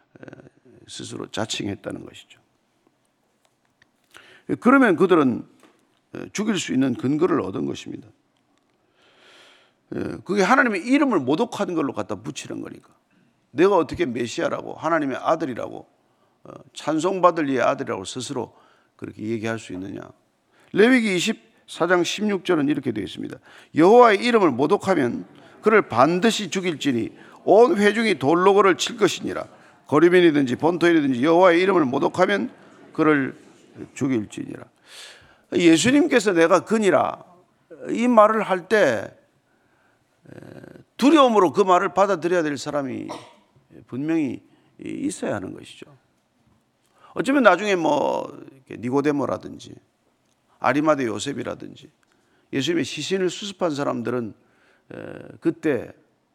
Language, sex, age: Korean, male, 50-69